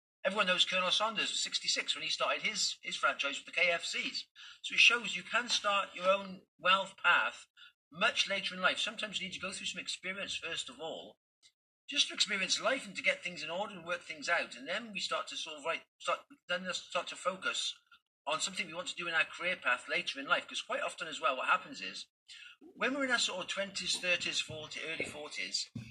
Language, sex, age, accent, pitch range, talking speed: English, male, 40-59, British, 175-255 Hz, 230 wpm